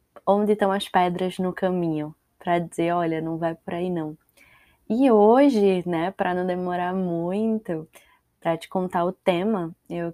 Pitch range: 170-195 Hz